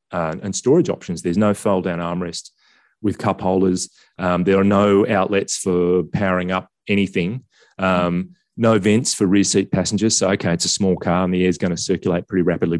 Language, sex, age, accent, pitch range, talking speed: English, male, 30-49, Australian, 90-115 Hz, 200 wpm